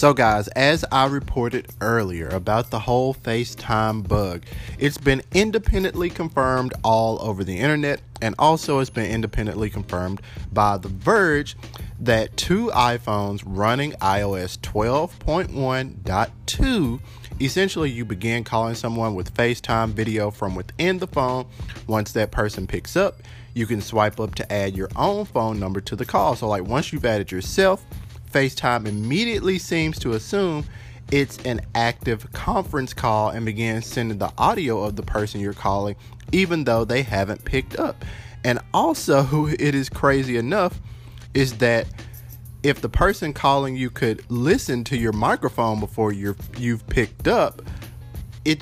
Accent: American